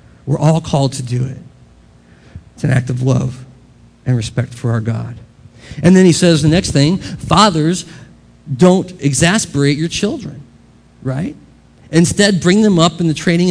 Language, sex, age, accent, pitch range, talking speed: English, male, 40-59, American, 120-175 Hz, 160 wpm